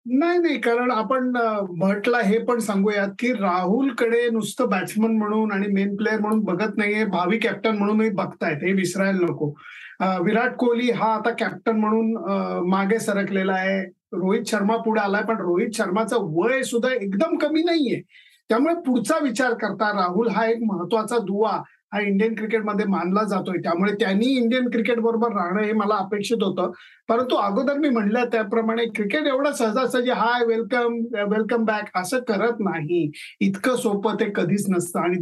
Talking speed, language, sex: 155 wpm, Marathi, male